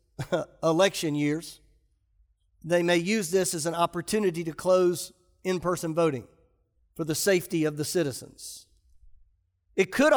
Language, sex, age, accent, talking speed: English, male, 40-59, American, 125 wpm